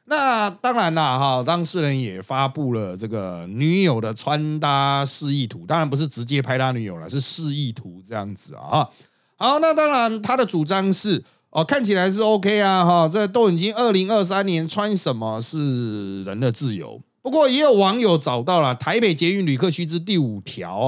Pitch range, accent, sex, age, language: 130-195 Hz, native, male, 30-49, Chinese